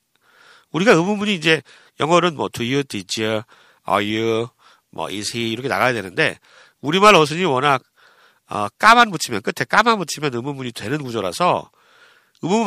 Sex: male